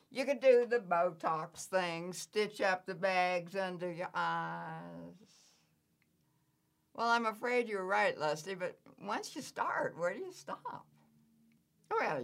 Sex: female